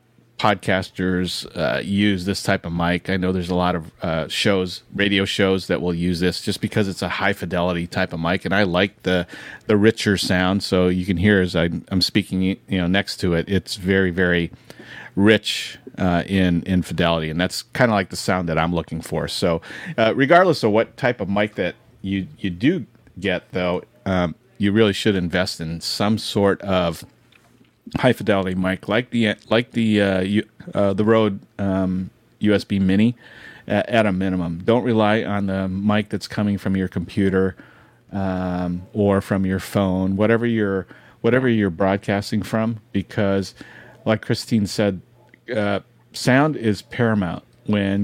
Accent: American